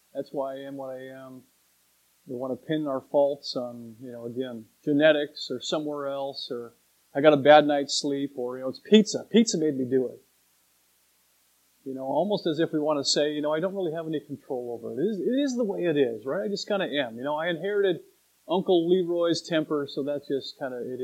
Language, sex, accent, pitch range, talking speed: English, male, American, 125-165 Hz, 240 wpm